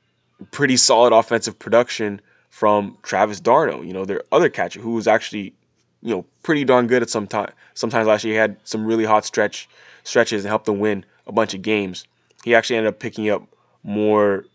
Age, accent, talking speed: 20-39, American, 200 wpm